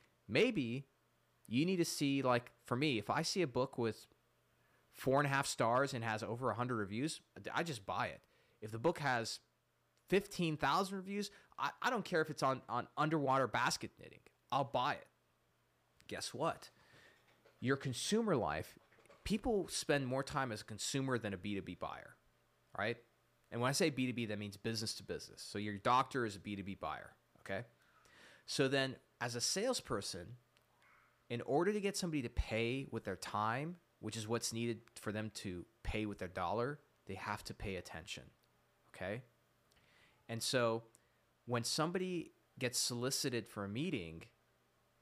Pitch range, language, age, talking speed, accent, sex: 110-140 Hz, English, 30-49, 165 wpm, American, male